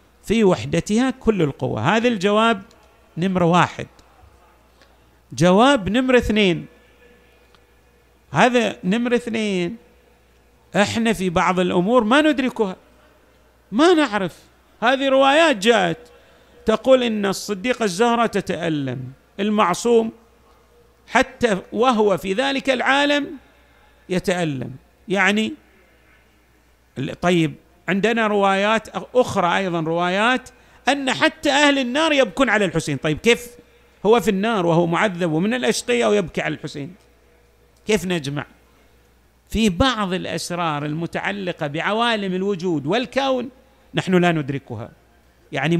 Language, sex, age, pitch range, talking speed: Arabic, male, 50-69, 170-235 Hz, 100 wpm